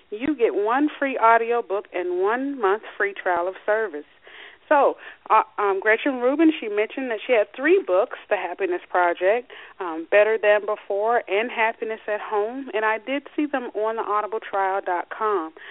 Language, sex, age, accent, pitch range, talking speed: English, female, 30-49, American, 200-250 Hz, 170 wpm